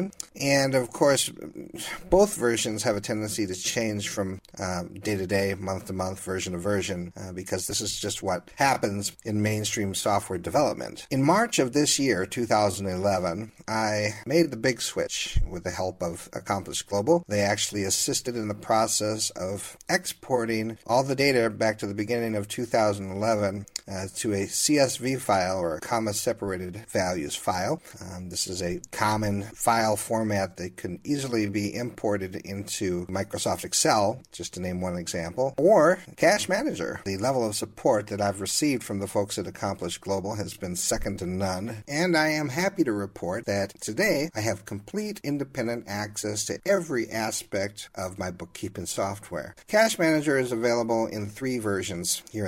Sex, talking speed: male, 160 wpm